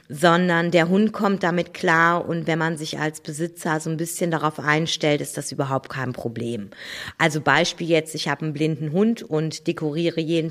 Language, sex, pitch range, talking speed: German, female, 155-180 Hz, 190 wpm